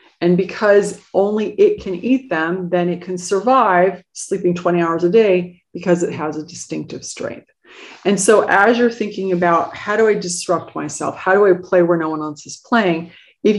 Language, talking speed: English, 195 wpm